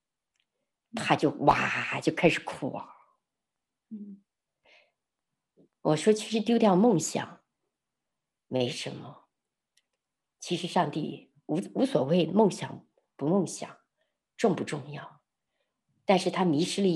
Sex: female